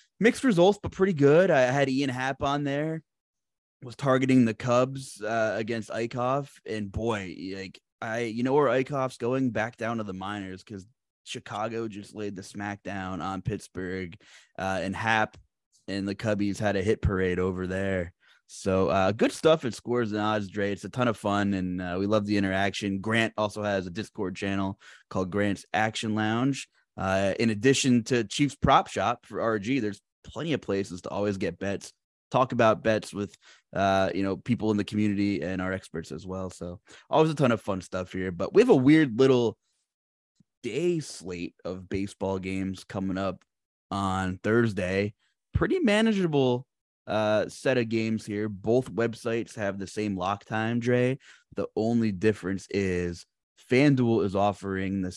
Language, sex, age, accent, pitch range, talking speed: English, male, 20-39, American, 95-120 Hz, 175 wpm